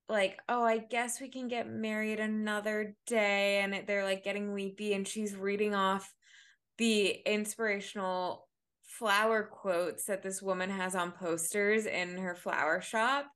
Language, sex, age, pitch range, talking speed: English, female, 20-39, 180-210 Hz, 150 wpm